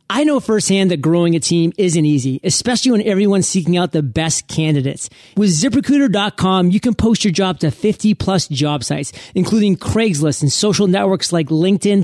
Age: 40-59